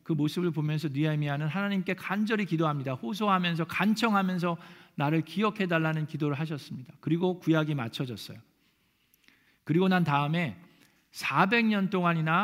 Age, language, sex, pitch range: 50-69, Korean, male, 155-200 Hz